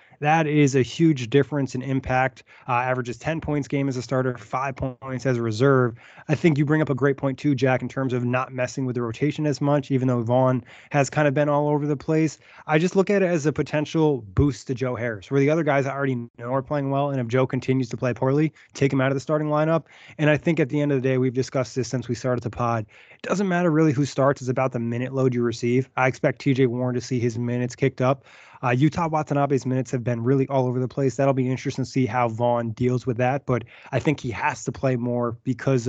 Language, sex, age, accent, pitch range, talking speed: English, male, 20-39, American, 125-145 Hz, 265 wpm